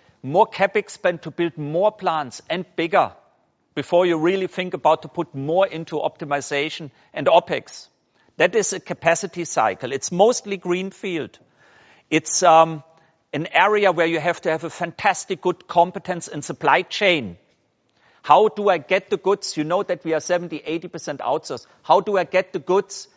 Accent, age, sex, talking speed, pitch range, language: German, 50-69, male, 170 wpm, 160-195 Hz, English